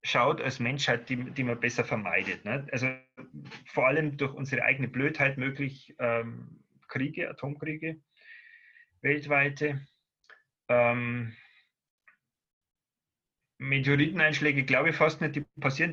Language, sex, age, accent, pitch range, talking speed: German, male, 30-49, German, 125-150 Hz, 110 wpm